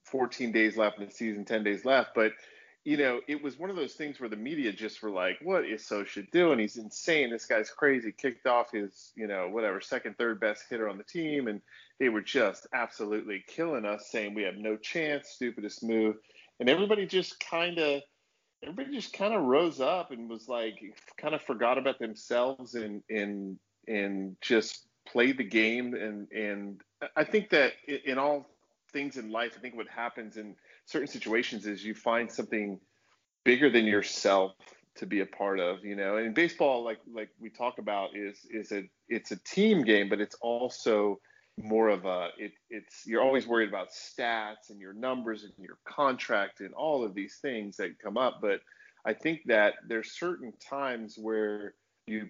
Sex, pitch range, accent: male, 105-135 Hz, American